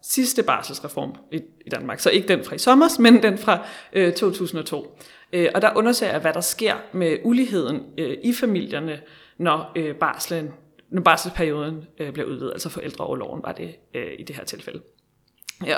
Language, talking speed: Danish, 170 wpm